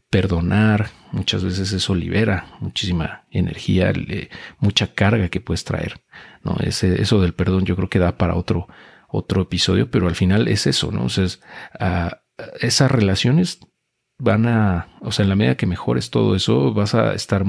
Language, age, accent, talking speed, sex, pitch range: Spanish, 40-59, Mexican, 180 wpm, male, 90-110 Hz